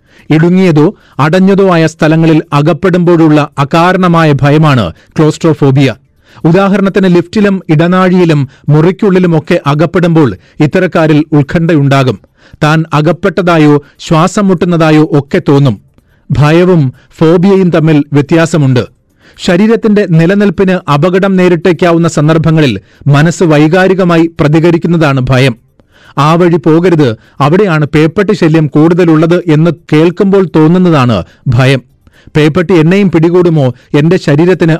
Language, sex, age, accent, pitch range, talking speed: Malayalam, male, 40-59, native, 145-180 Hz, 85 wpm